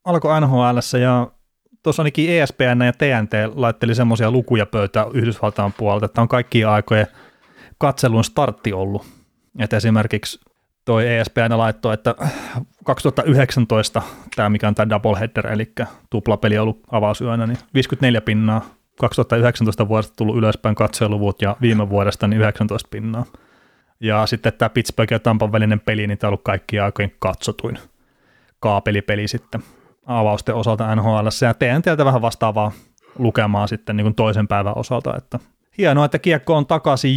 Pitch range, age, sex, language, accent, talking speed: 105-125 Hz, 30-49, male, Finnish, native, 145 wpm